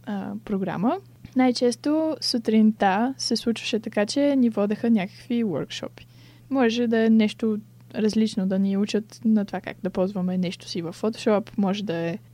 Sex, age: female, 10-29